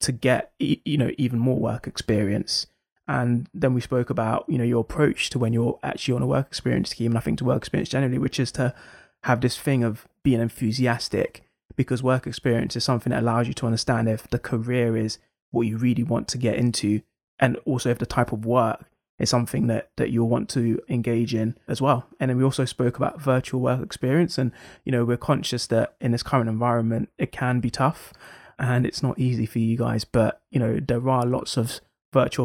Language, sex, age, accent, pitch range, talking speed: English, male, 20-39, British, 115-130 Hz, 220 wpm